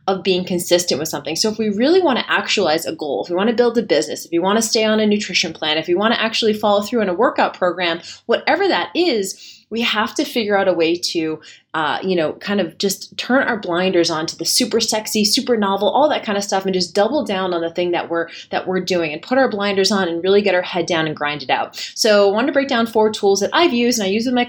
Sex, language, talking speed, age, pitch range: female, English, 285 wpm, 20-39, 180-245 Hz